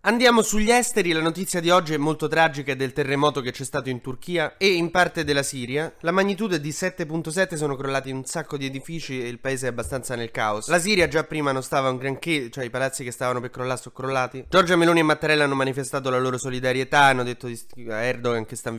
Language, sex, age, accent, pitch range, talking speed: Italian, male, 20-39, native, 125-160 Hz, 235 wpm